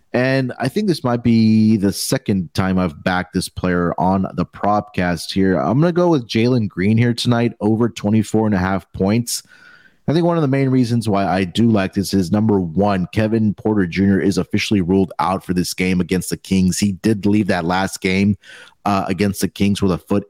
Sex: male